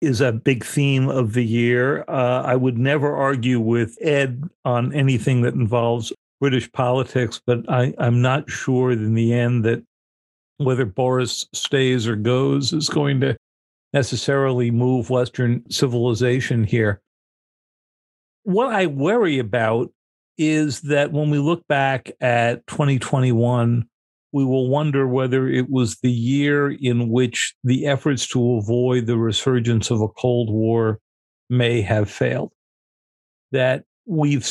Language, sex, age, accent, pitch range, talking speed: English, male, 50-69, American, 115-135 Hz, 135 wpm